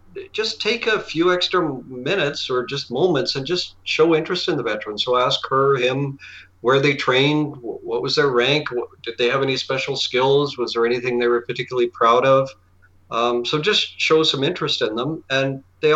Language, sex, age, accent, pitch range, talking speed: English, male, 40-59, American, 125-155 Hz, 195 wpm